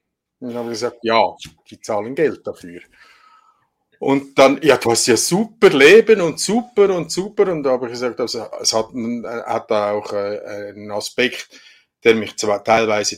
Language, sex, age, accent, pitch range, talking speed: German, male, 50-69, Austrian, 125-160 Hz, 175 wpm